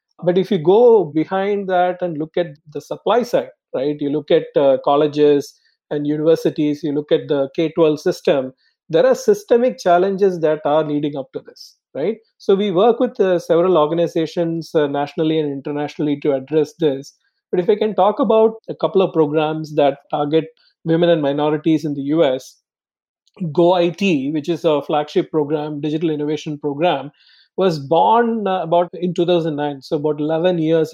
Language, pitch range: English, 155-180 Hz